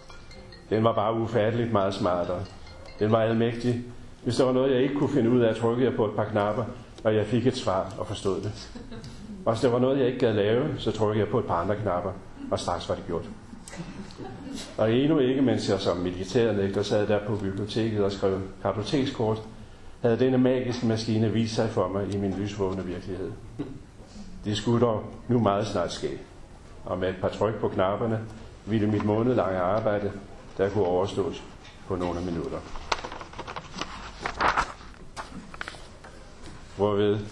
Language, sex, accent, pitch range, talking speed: Danish, male, native, 100-120 Hz, 170 wpm